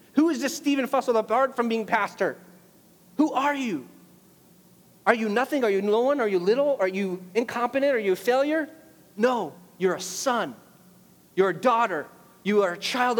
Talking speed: 180 wpm